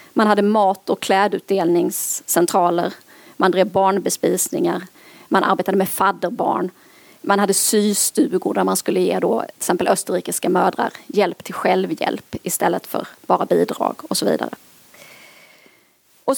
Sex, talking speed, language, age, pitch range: female, 130 wpm, Swedish, 30-49, 195-260 Hz